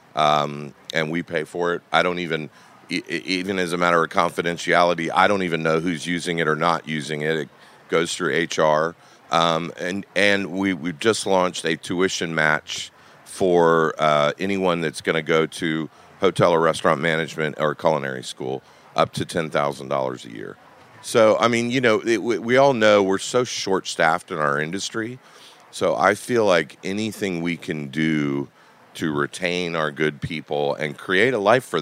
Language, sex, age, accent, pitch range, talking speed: English, male, 40-59, American, 80-100 Hz, 175 wpm